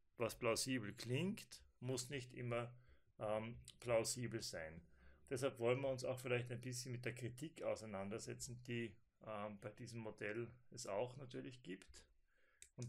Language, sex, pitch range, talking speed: German, male, 115-130 Hz, 145 wpm